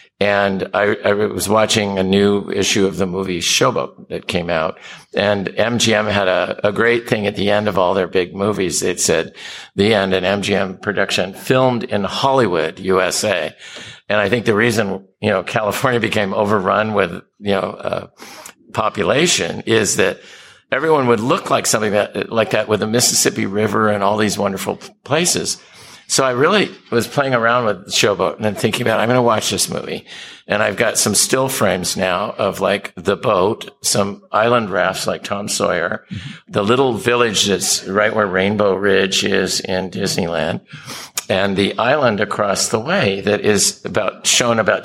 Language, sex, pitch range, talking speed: English, male, 100-120 Hz, 175 wpm